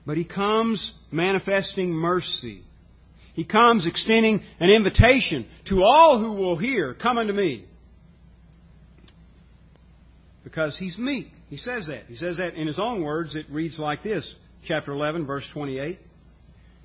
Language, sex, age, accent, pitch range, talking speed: English, male, 50-69, American, 115-180 Hz, 140 wpm